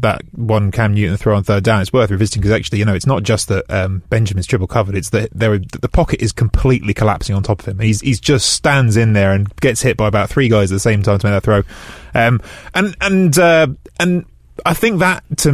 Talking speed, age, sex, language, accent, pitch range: 250 wpm, 20-39, male, English, British, 110-130 Hz